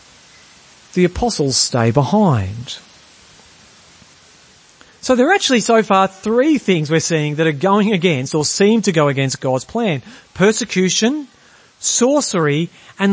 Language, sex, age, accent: English, male, 40-59, Australian